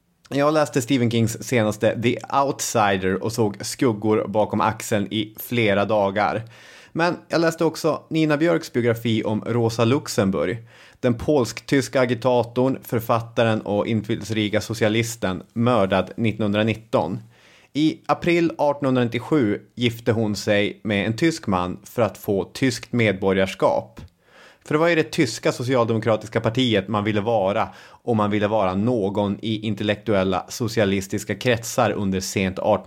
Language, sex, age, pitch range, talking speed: English, male, 30-49, 105-125 Hz, 130 wpm